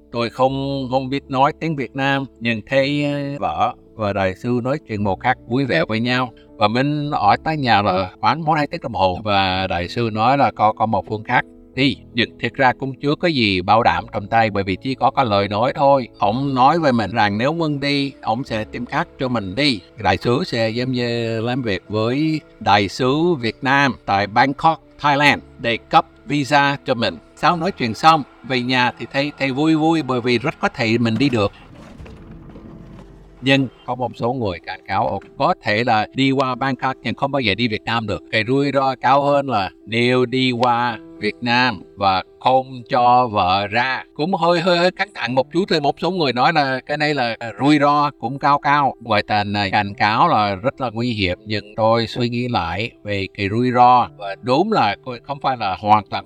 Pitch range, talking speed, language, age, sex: 110-140 Hz, 220 wpm, Vietnamese, 60-79, male